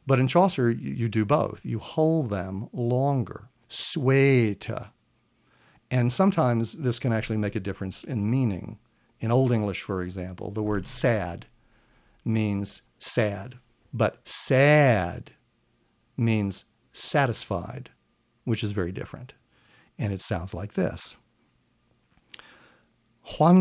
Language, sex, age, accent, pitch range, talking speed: English, male, 60-79, American, 110-150 Hz, 115 wpm